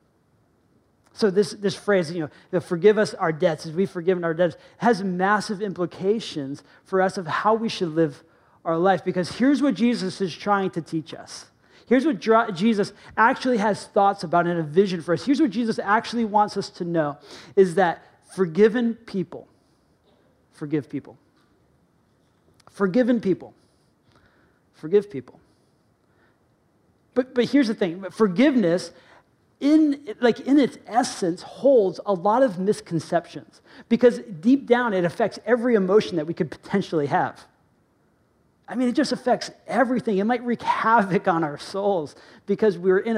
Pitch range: 170-230 Hz